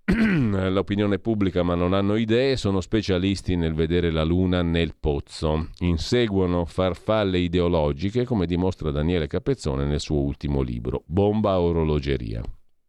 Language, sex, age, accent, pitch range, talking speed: Italian, male, 40-59, native, 80-110 Hz, 125 wpm